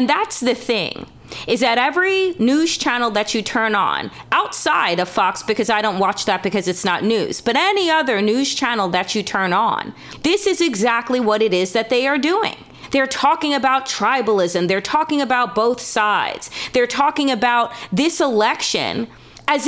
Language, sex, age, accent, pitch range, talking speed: English, female, 30-49, American, 230-295 Hz, 180 wpm